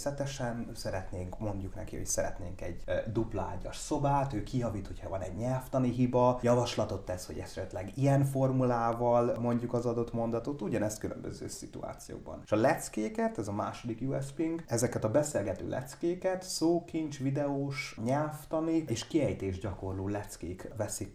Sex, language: male, Hungarian